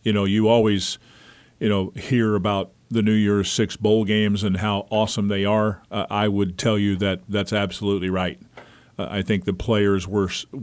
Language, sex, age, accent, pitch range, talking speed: English, male, 40-59, American, 100-115 Hz, 190 wpm